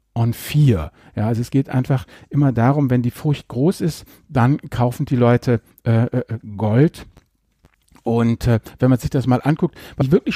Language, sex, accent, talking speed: German, male, German, 185 wpm